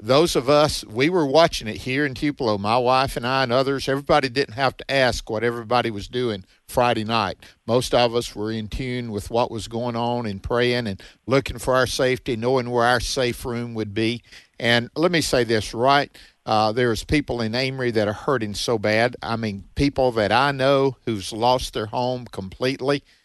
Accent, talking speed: American, 205 wpm